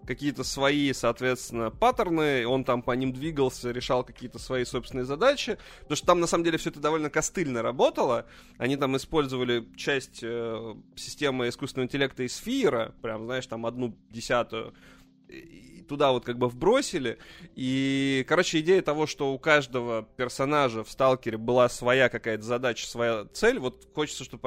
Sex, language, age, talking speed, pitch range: male, Russian, 20-39, 160 wpm, 120-150 Hz